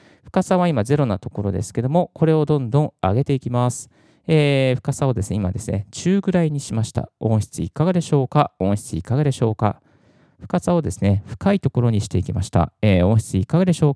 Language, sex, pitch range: Japanese, male, 105-160 Hz